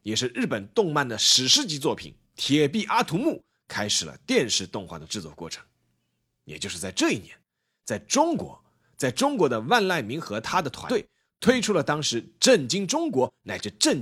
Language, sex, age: Chinese, male, 30-49